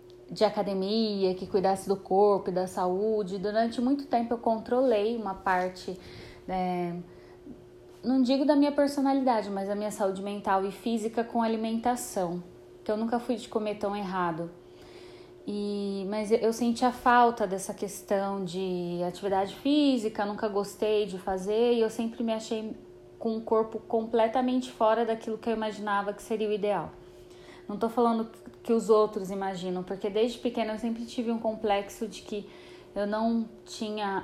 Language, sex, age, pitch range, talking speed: Portuguese, female, 10-29, 190-225 Hz, 160 wpm